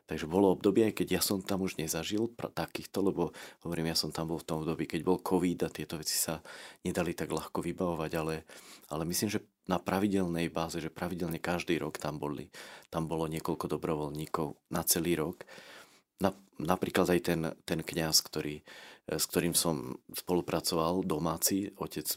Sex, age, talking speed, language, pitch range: male, 30-49, 175 wpm, Slovak, 80-95 Hz